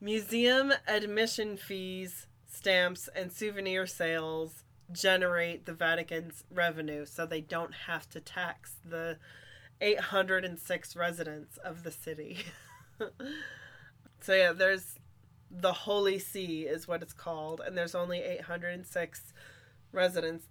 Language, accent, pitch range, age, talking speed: English, American, 160-185 Hz, 20-39, 110 wpm